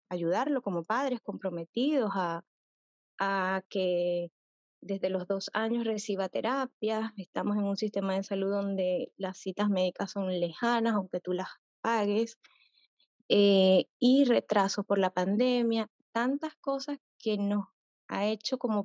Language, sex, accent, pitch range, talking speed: Spanish, female, American, 195-245 Hz, 135 wpm